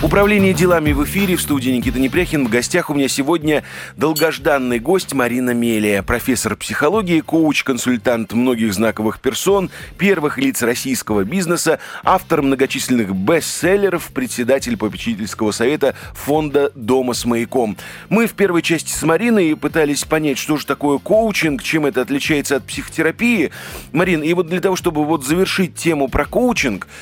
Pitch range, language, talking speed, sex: 120-170 Hz, Russian, 145 wpm, male